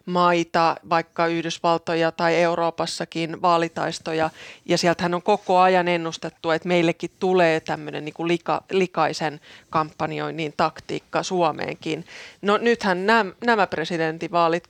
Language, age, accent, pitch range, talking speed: Finnish, 20-39, native, 160-200 Hz, 115 wpm